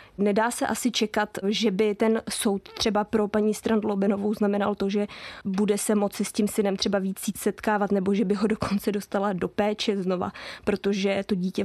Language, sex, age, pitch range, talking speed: Czech, female, 20-39, 195-210 Hz, 185 wpm